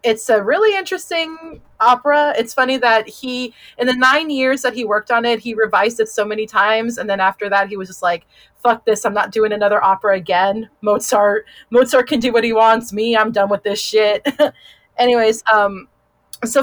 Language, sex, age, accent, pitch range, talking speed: English, female, 30-49, American, 210-265 Hz, 200 wpm